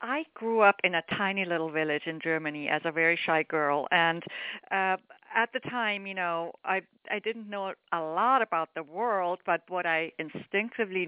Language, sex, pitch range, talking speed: English, female, 165-195 Hz, 190 wpm